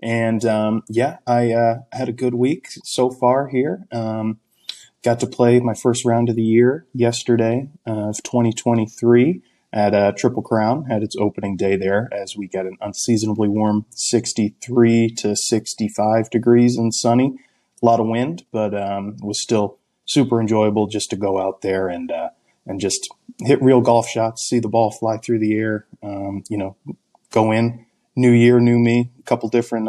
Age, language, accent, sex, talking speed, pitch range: 20-39, English, American, male, 175 wpm, 105-120 Hz